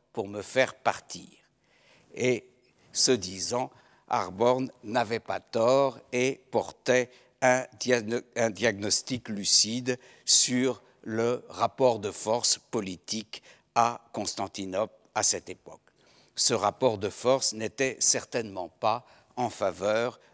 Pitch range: 110-130 Hz